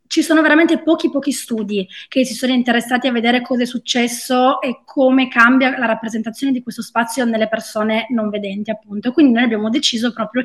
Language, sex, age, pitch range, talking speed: Italian, female, 20-39, 220-265 Hz, 190 wpm